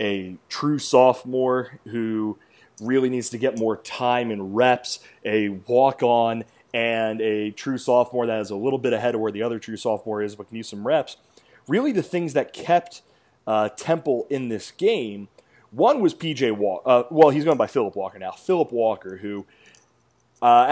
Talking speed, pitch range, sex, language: 175 wpm, 110-140 Hz, male, English